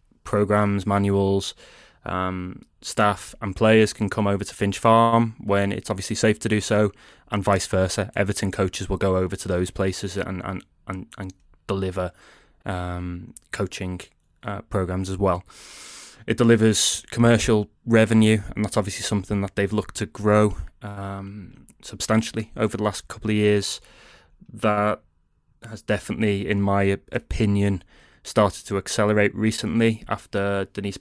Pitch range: 95-105 Hz